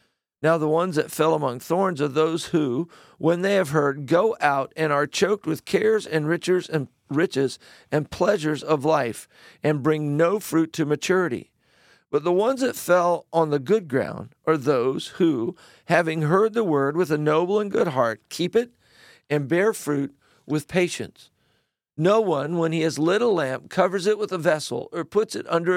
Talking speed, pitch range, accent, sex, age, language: 190 wpm, 145-180 Hz, American, male, 50-69, English